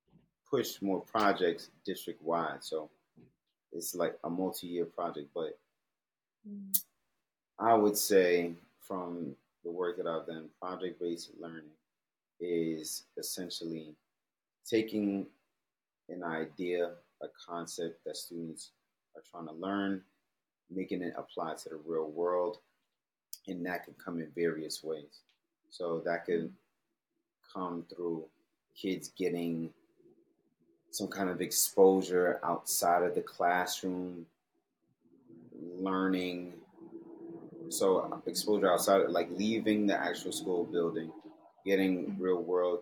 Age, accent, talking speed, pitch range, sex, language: 30-49, American, 110 wpm, 85-100 Hz, male, English